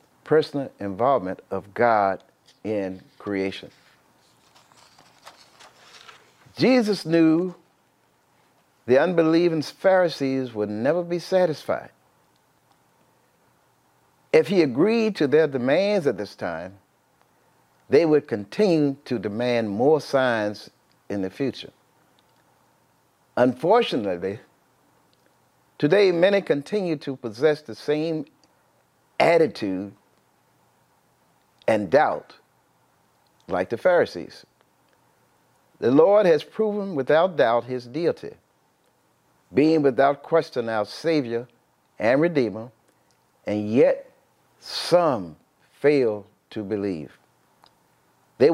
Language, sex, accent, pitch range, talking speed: English, male, American, 110-170 Hz, 85 wpm